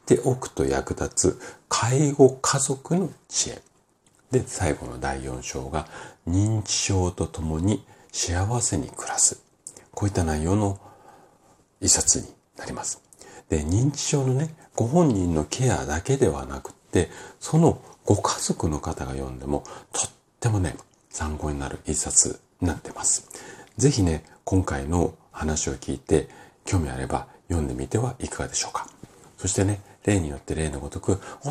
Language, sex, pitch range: Japanese, male, 75-100 Hz